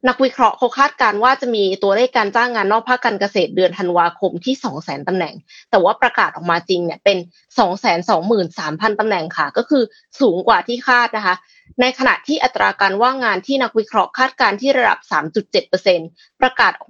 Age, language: 20-39, Thai